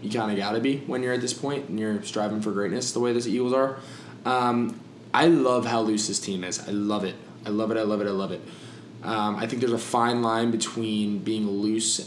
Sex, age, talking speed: male, 20-39, 255 wpm